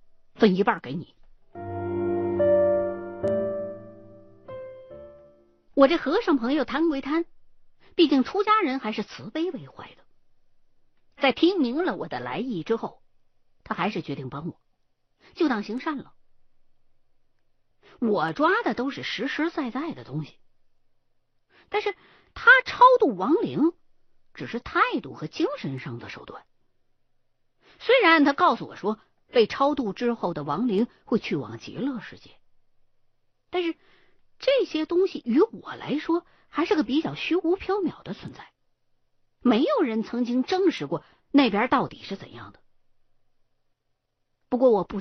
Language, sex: Chinese, female